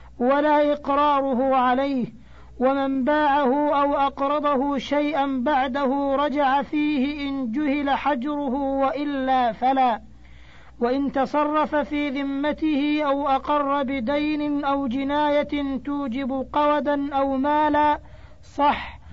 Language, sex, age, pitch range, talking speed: Arabic, female, 40-59, 270-290 Hz, 95 wpm